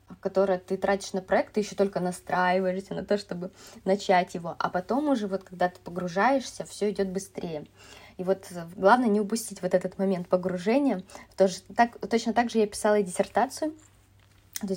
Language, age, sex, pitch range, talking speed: Russian, 20-39, female, 180-205 Hz, 165 wpm